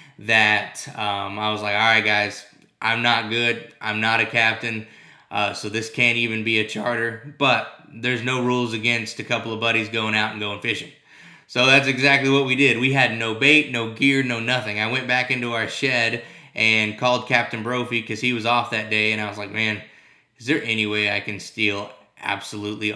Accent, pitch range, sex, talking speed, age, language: American, 110-125 Hz, male, 210 wpm, 20-39, English